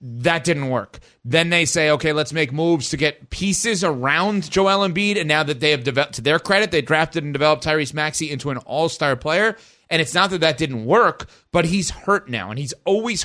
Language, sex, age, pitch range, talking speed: English, male, 30-49, 145-195 Hz, 220 wpm